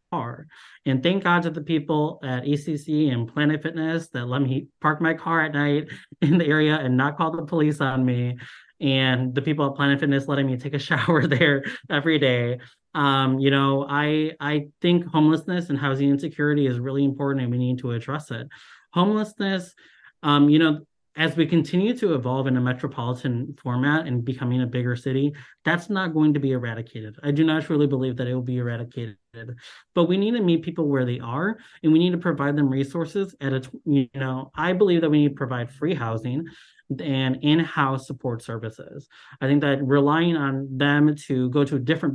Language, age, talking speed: English, 30-49, 200 wpm